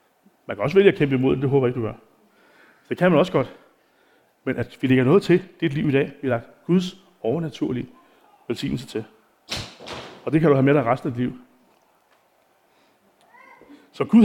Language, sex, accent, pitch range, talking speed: Danish, male, native, 125-165 Hz, 210 wpm